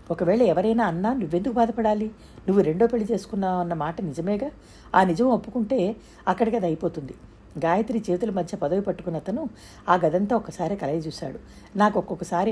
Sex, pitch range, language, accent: female, 170-215 Hz, Telugu, native